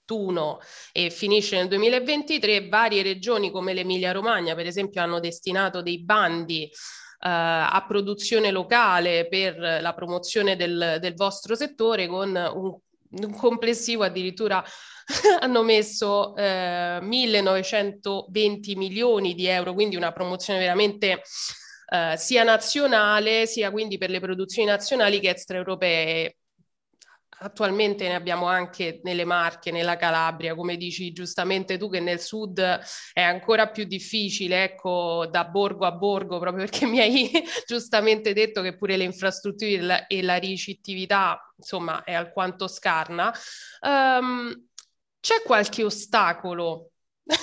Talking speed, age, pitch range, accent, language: 125 wpm, 20-39, 180-220 Hz, native, Italian